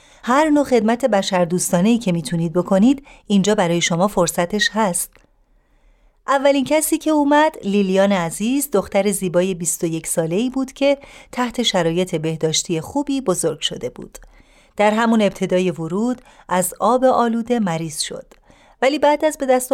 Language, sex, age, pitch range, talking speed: Persian, female, 30-49, 180-250 Hz, 145 wpm